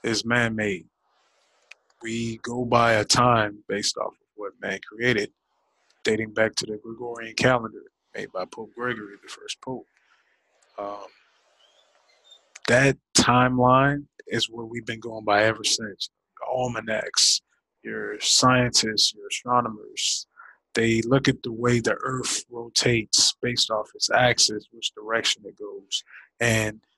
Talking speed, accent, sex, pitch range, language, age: 135 wpm, American, male, 115-130 Hz, English, 20-39